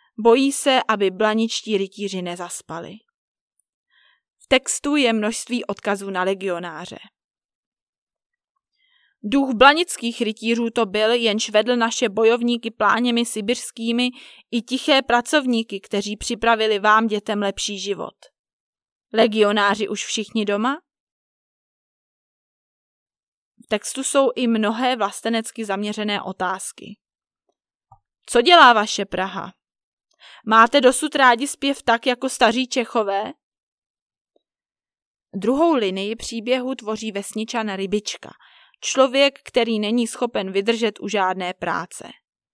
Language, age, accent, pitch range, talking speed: Czech, 20-39, native, 210-260 Hz, 100 wpm